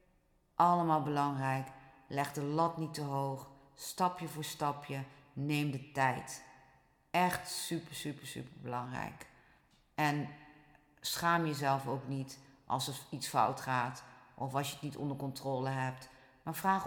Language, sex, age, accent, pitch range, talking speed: Dutch, female, 40-59, Dutch, 135-155 Hz, 140 wpm